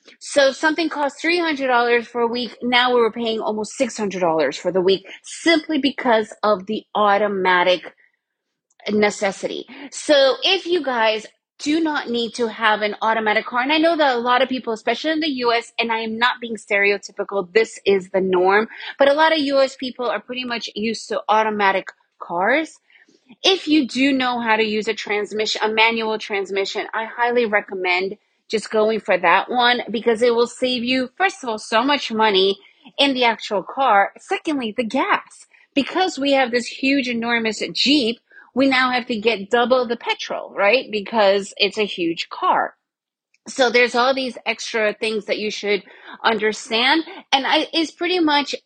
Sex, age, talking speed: female, 30-49, 175 wpm